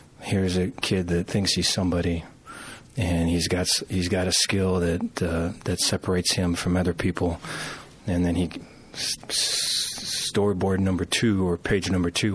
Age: 30-49